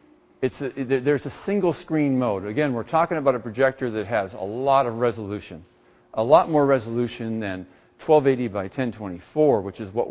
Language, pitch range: English, 110-135 Hz